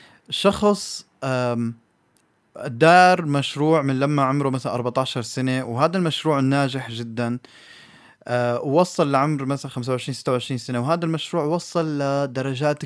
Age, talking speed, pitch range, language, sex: 20-39, 115 wpm, 120-160 Hz, Arabic, male